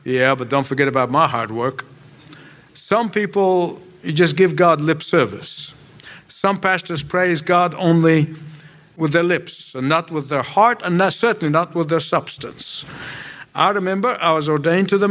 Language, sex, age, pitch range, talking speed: English, male, 50-69, 135-175 Hz, 165 wpm